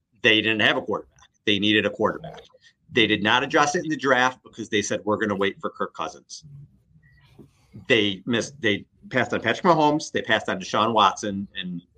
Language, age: English, 40-59